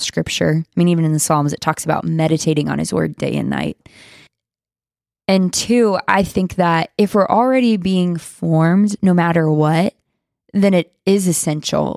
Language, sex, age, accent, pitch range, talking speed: English, female, 20-39, American, 160-195 Hz, 170 wpm